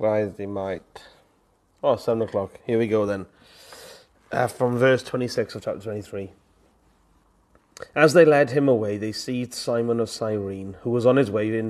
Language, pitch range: English, 105-125 Hz